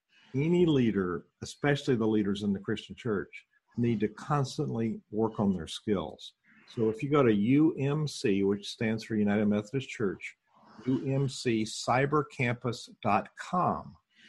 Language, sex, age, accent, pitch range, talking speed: English, male, 50-69, American, 105-130 Hz, 120 wpm